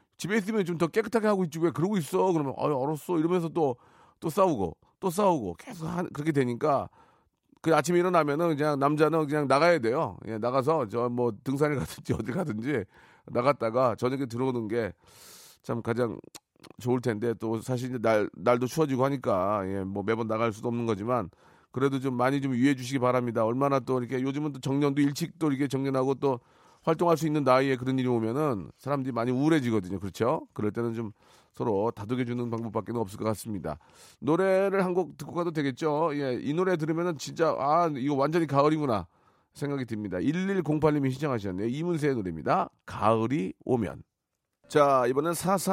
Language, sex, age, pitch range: Korean, male, 40-59, 115-155 Hz